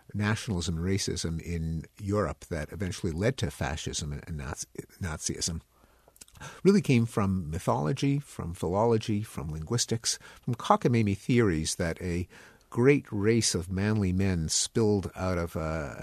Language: English